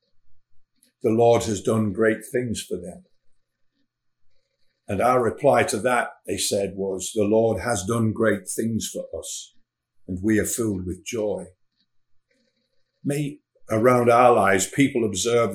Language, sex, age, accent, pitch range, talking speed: English, male, 50-69, British, 100-120 Hz, 140 wpm